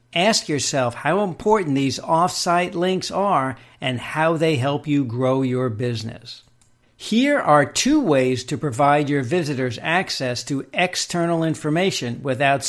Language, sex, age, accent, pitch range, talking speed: English, male, 60-79, American, 130-175 Hz, 135 wpm